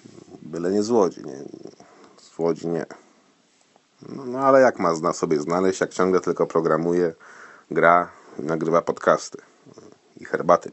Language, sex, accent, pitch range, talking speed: Polish, male, native, 95-135 Hz, 140 wpm